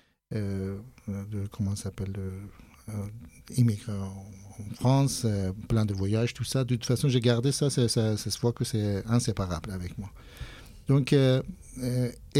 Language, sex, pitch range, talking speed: French, male, 100-120 Hz, 160 wpm